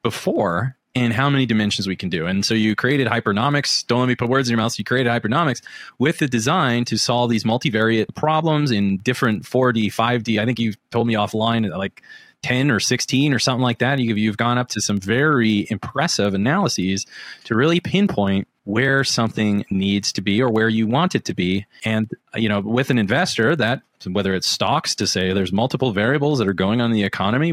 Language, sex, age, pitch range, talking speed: English, male, 30-49, 95-125 Hz, 205 wpm